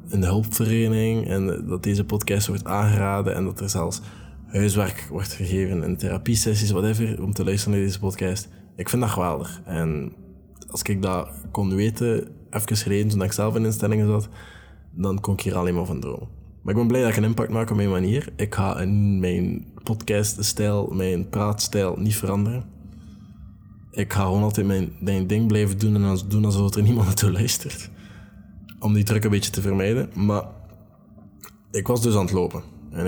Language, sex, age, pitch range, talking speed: Dutch, male, 20-39, 95-105 Hz, 185 wpm